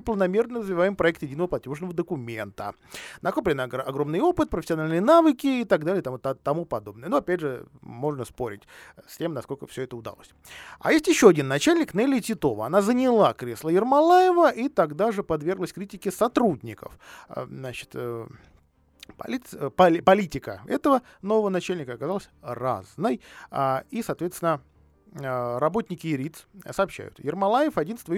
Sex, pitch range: male, 135-205 Hz